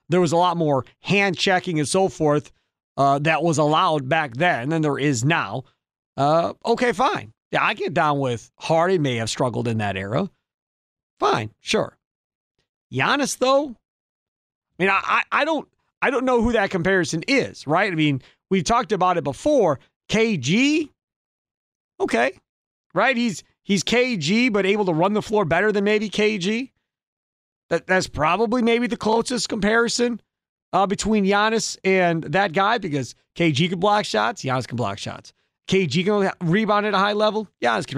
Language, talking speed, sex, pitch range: English, 165 wpm, male, 150-220 Hz